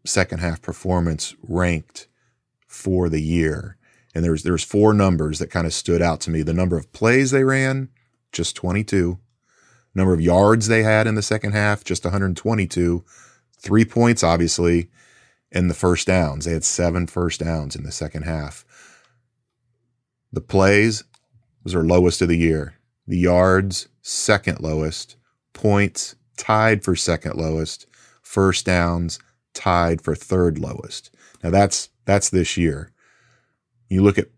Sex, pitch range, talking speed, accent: male, 85-110 Hz, 150 wpm, American